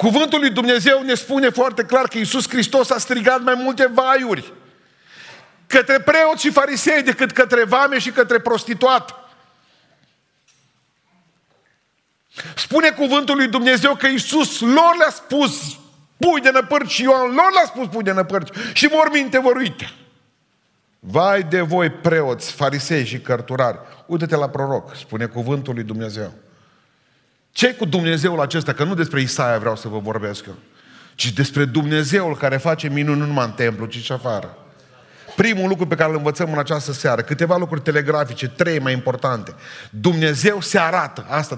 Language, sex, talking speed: Romanian, male, 155 wpm